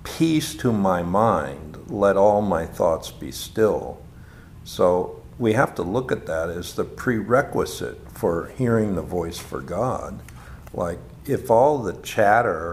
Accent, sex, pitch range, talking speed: American, male, 85-110 Hz, 145 wpm